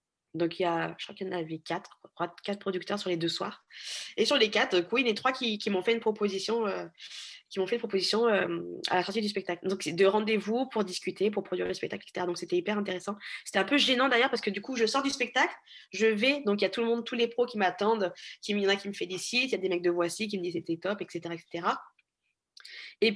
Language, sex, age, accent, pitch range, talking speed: French, female, 20-39, French, 190-235 Hz, 285 wpm